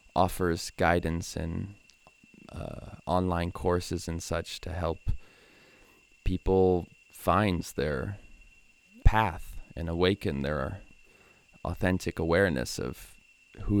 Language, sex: English, male